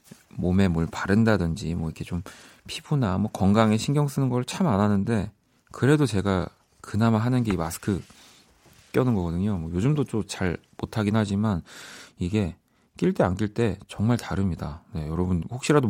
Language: Korean